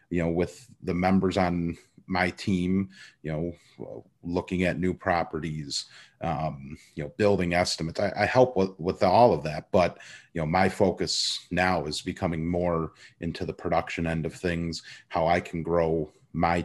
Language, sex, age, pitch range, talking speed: English, male, 30-49, 80-90 Hz, 170 wpm